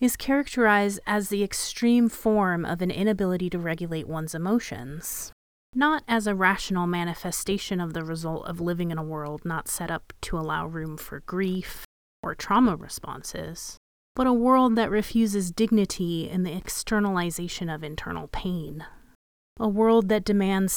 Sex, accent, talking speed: female, American, 155 wpm